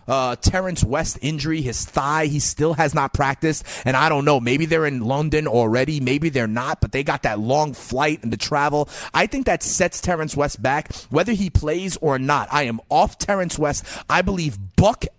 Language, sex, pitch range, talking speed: English, male, 125-175 Hz, 205 wpm